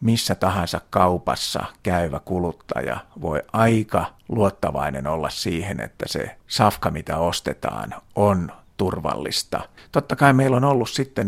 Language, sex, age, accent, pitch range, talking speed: Finnish, male, 50-69, native, 90-110 Hz, 120 wpm